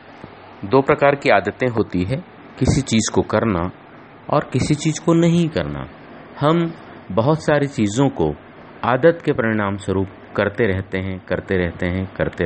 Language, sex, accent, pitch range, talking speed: English, male, Indian, 90-130 Hz, 155 wpm